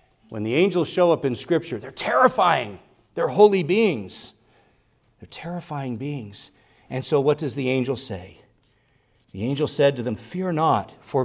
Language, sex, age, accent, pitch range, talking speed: English, male, 50-69, American, 120-185 Hz, 160 wpm